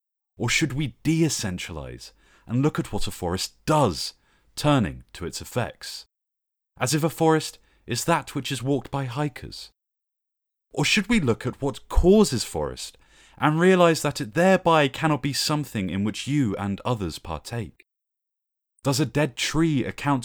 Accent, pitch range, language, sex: British, 105-150 Hz, English, male